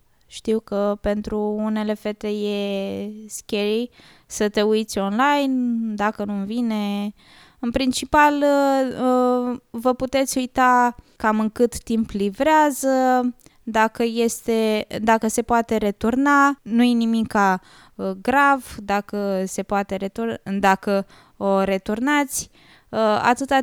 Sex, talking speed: female, 105 wpm